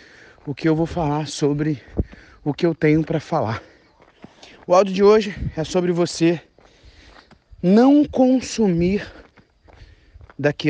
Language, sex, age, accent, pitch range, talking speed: Portuguese, male, 30-49, Brazilian, 150-215 Hz, 125 wpm